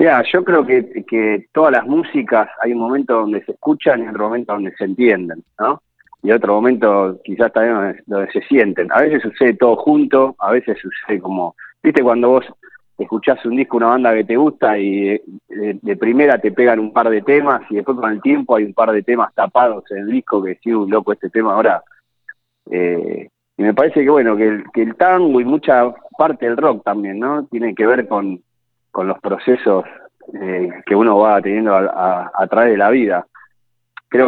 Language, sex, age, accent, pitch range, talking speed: Spanish, male, 30-49, Argentinian, 100-125 Hz, 210 wpm